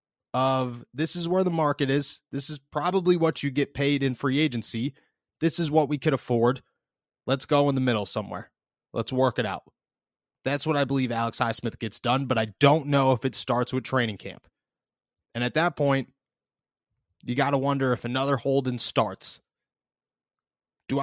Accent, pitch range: American, 125-150 Hz